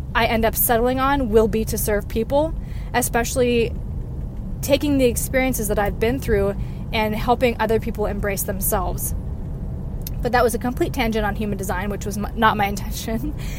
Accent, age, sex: American, 20-39, female